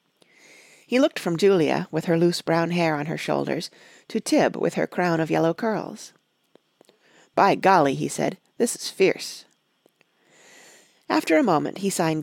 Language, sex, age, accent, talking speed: English, female, 40-59, American, 155 wpm